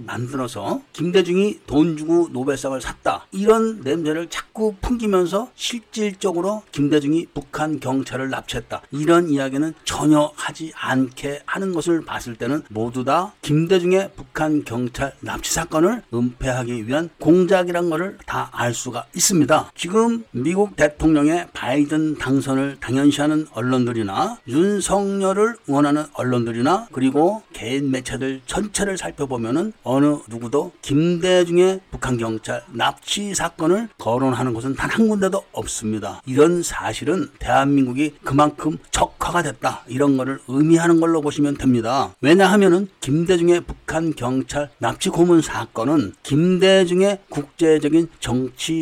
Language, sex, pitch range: Korean, male, 130-180 Hz